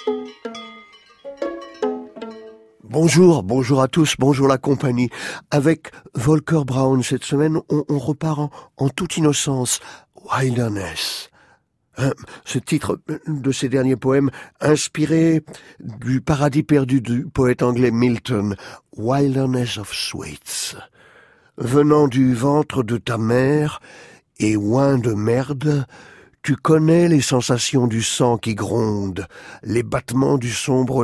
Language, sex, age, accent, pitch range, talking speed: French, male, 50-69, French, 120-150 Hz, 115 wpm